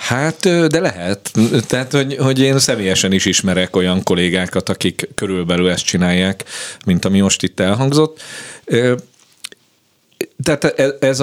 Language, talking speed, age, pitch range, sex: Hungarian, 125 wpm, 50-69, 95-120 Hz, male